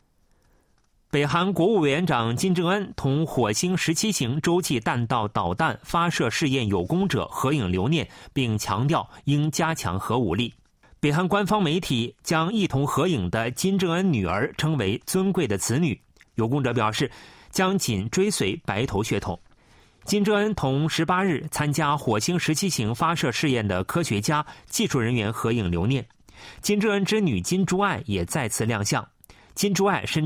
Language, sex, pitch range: Chinese, male, 110-175 Hz